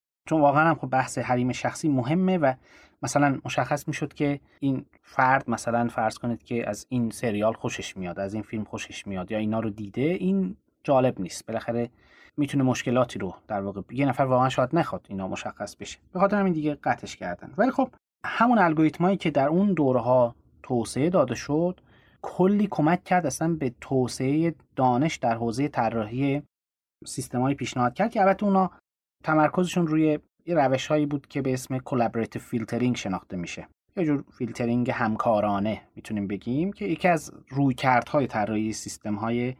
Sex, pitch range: male, 115-160 Hz